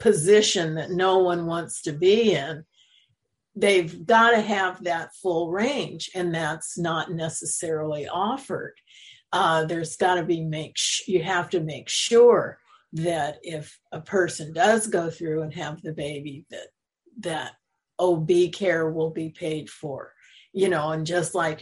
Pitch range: 160-200 Hz